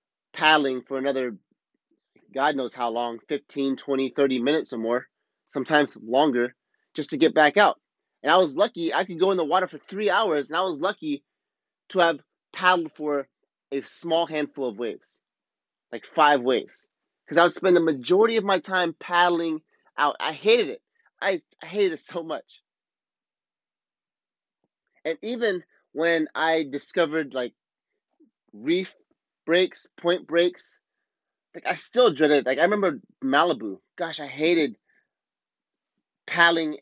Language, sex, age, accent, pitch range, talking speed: English, male, 30-49, American, 135-175 Hz, 150 wpm